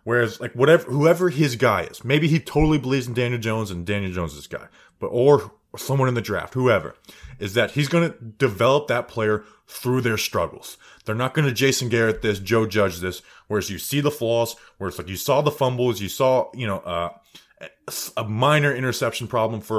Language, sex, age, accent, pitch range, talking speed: English, male, 20-39, American, 110-145 Hz, 205 wpm